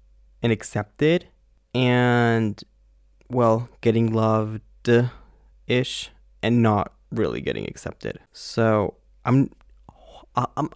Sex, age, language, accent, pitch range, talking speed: male, 20-39, English, American, 100-120 Hz, 80 wpm